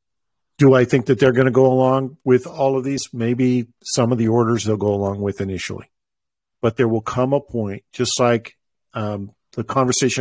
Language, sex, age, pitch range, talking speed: English, male, 50-69, 105-130 Hz, 200 wpm